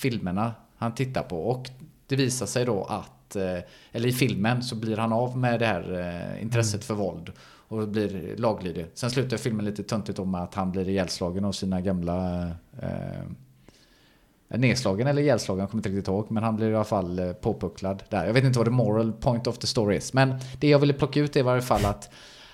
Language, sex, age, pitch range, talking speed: Swedish, male, 30-49, 100-125 Hz, 210 wpm